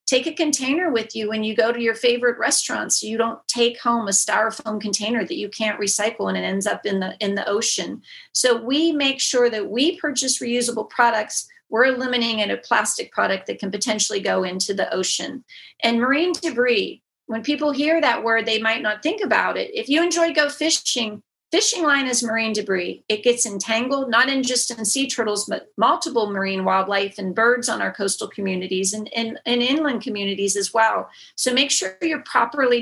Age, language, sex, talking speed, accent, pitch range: 40-59, English, female, 200 wpm, American, 205-270 Hz